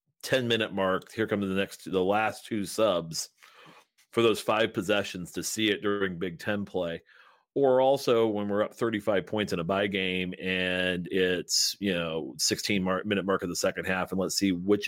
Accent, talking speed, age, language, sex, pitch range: American, 200 wpm, 40-59, English, male, 90-105 Hz